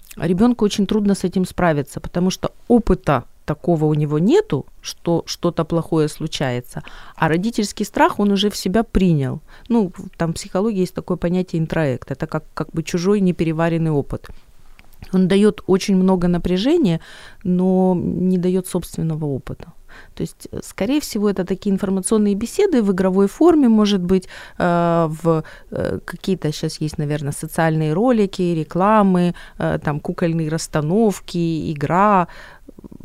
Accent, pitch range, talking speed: native, 160-205 Hz, 140 wpm